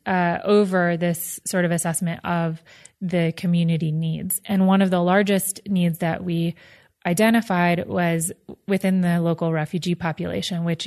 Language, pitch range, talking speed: English, 170-195 Hz, 145 wpm